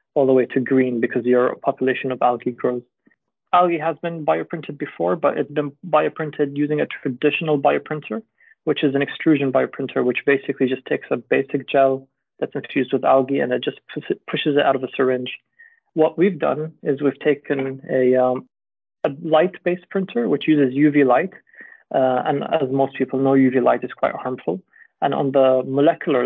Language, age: English, 30-49